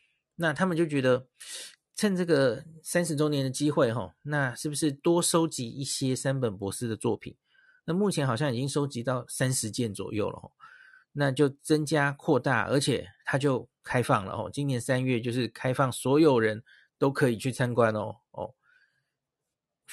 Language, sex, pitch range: Chinese, male, 125-150 Hz